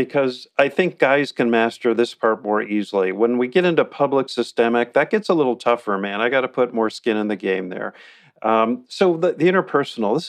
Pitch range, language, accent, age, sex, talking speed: 110-135 Hz, English, American, 50-69, male, 220 wpm